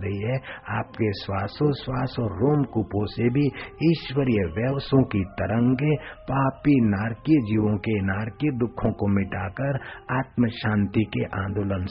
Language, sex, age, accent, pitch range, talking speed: Hindi, male, 50-69, native, 110-135 Hz, 125 wpm